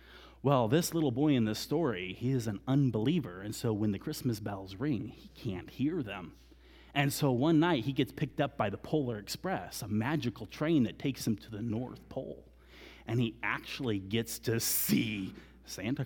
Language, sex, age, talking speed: English, male, 30-49, 190 wpm